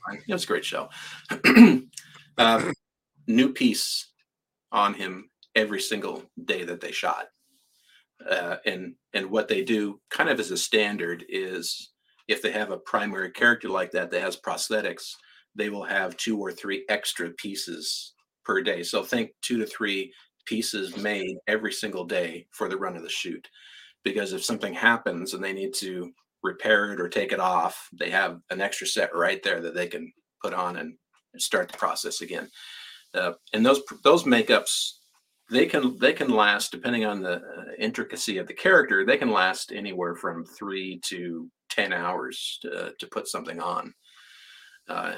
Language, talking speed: English, 170 wpm